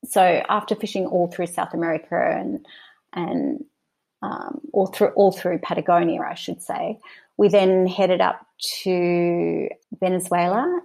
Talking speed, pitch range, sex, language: 135 wpm, 175-210 Hz, female, English